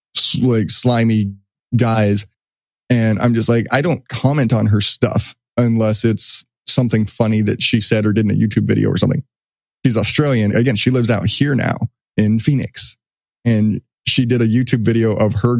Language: English